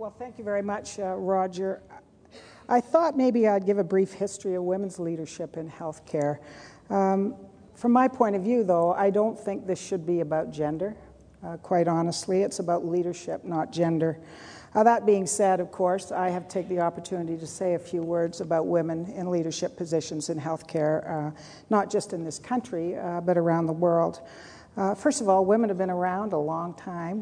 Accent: American